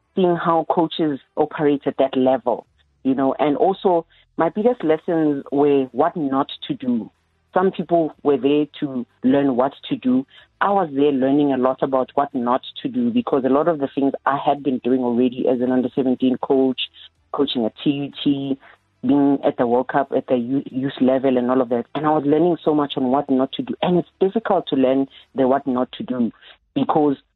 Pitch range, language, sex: 130-160 Hz, English, female